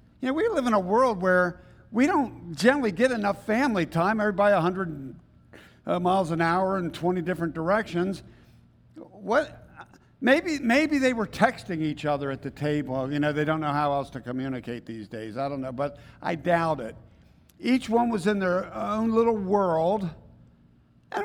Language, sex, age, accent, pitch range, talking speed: English, male, 50-69, American, 140-205 Hz, 175 wpm